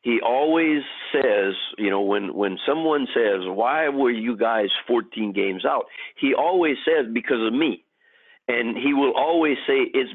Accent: American